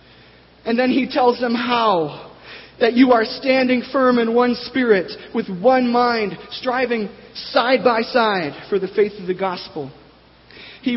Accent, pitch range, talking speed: American, 185-240 Hz, 155 wpm